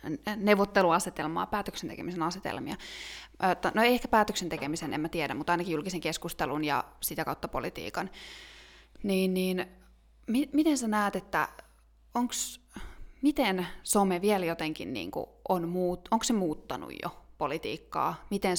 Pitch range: 170-205 Hz